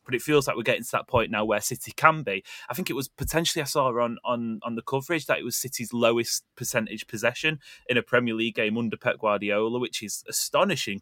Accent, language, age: British, English, 30-49